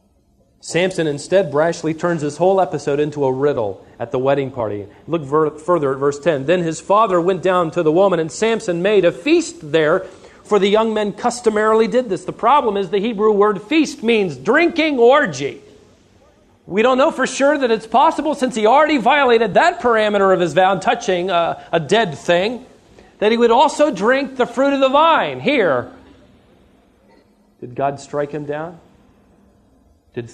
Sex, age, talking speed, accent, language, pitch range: male, 40-59, 175 wpm, American, English, 130-205 Hz